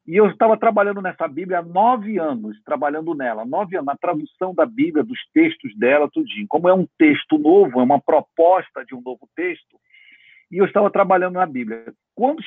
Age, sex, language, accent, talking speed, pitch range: 50-69, male, Portuguese, Brazilian, 190 wpm, 150-225 Hz